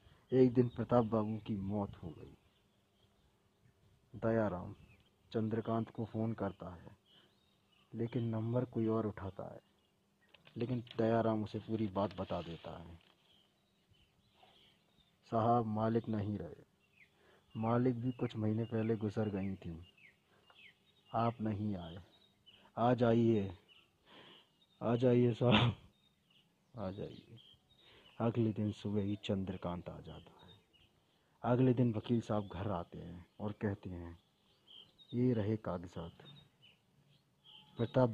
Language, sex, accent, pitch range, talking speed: Hindi, male, native, 95-115 Hz, 115 wpm